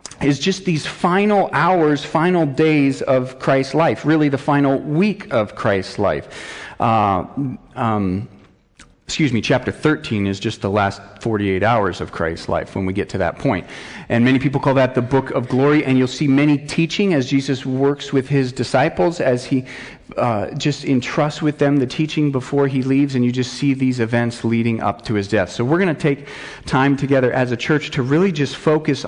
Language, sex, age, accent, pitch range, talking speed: English, male, 40-59, American, 120-150 Hz, 195 wpm